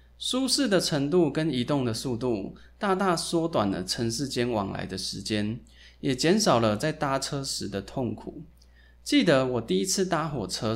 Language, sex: Chinese, male